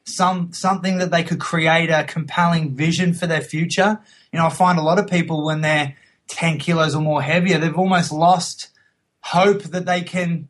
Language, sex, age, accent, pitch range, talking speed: English, male, 20-39, Australian, 155-180 Hz, 195 wpm